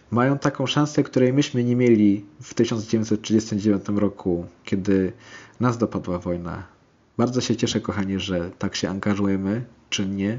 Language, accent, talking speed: Polish, native, 135 wpm